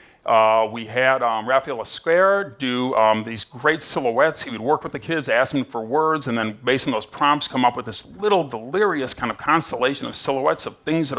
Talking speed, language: 220 wpm, Spanish